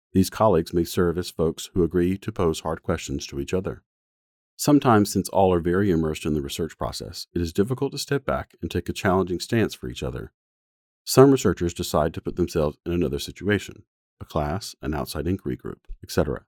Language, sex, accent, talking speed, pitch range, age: English, male, American, 200 wpm, 75-95 Hz, 40-59